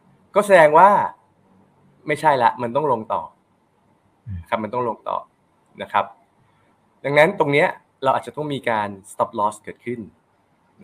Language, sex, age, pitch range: Thai, male, 20-39, 105-150 Hz